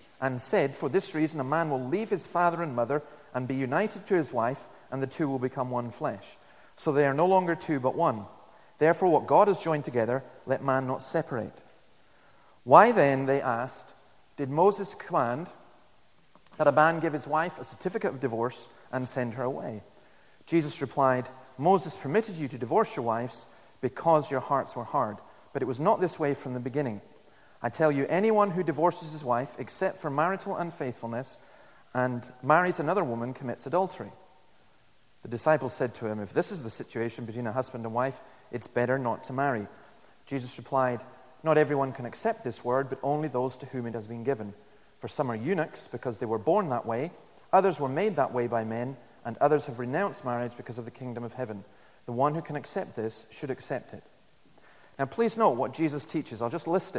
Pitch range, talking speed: 125-160 Hz, 200 wpm